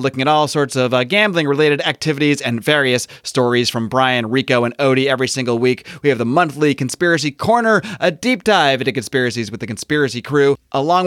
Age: 30-49